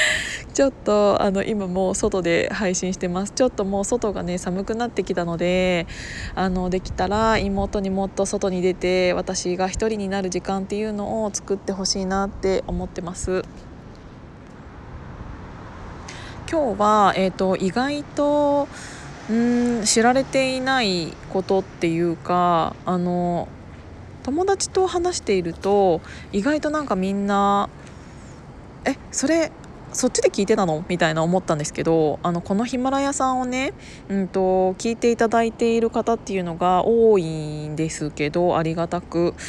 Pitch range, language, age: 180-230 Hz, Japanese, 20-39